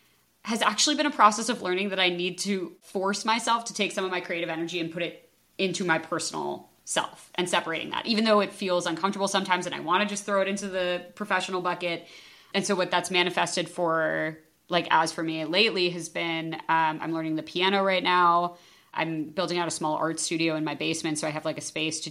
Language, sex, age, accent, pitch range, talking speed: English, female, 20-39, American, 165-200 Hz, 230 wpm